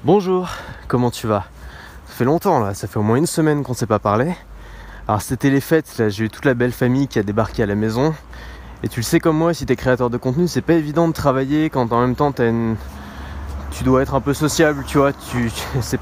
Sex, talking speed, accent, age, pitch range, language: male, 245 wpm, French, 20-39, 115-150 Hz, French